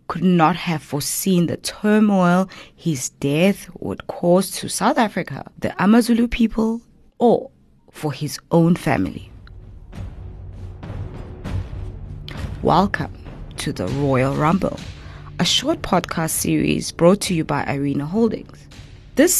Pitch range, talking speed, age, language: 155-220 Hz, 115 wpm, 20-39, English